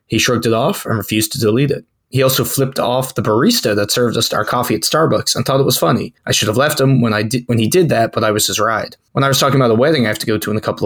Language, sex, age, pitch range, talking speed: English, male, 20-39, 115-135 Hz, 325 wpm